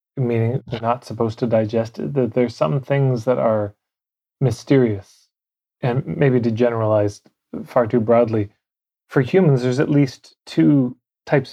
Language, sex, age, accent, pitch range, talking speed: English, male, 30-49, American, 110-130 Hz, 140 wpm